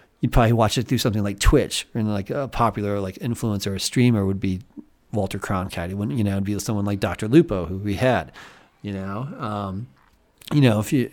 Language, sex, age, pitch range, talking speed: English, male, 30-49, 100-125 Hz, 220 wpm